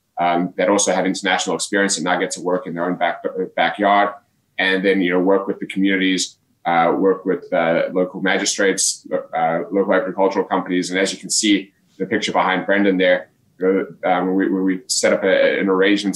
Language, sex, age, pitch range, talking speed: English, male, 20-39, 90-100 Hz, 195 wpm